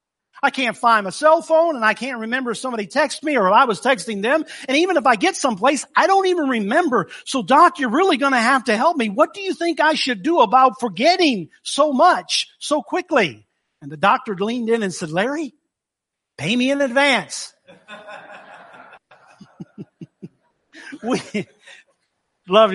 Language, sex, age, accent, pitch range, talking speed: English, male, 50-69, American, 210-300 Hz, 175 wpm